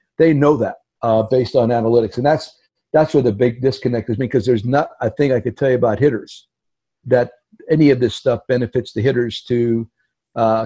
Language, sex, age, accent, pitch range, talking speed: English, male, 50-69, American, 110-130 Hz, 205 wpm